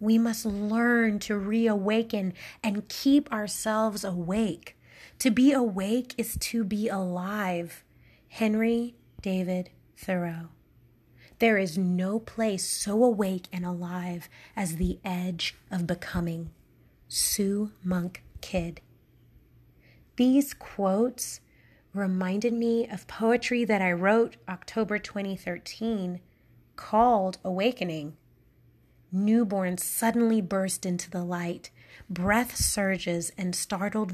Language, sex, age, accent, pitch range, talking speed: English, female, 30-49, American, 180-225 Hz, 100 wpm